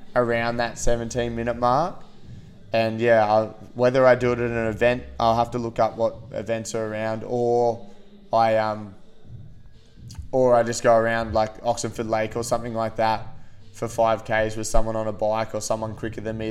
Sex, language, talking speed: male, English, 185 wpm